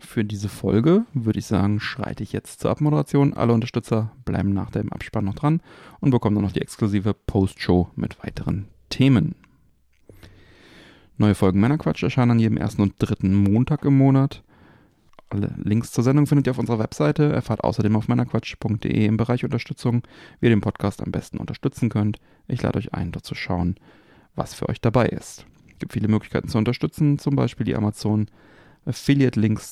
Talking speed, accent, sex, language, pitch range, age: 180 wpm, German, male, German, 100-125 Hz, 40-59